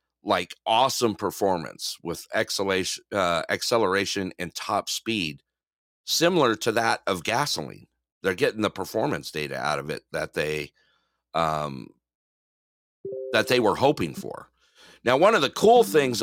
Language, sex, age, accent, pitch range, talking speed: English, male, 50-69, American, 80-105 Hz, 135 wpm